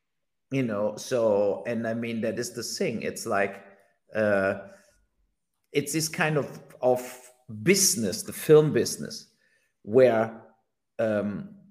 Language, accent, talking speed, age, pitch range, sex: English, German, 125 wpm, 50-69, 105-145 Hz, male